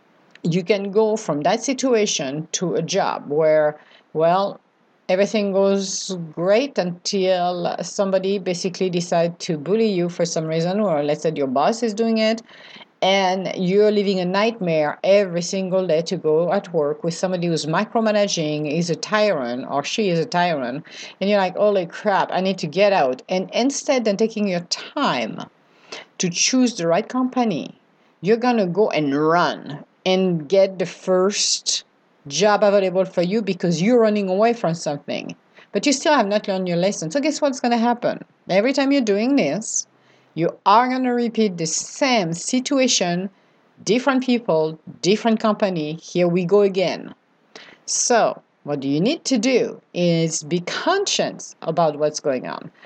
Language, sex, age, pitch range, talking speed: English, female, 50-69, 175-230 Hz, 165 wpm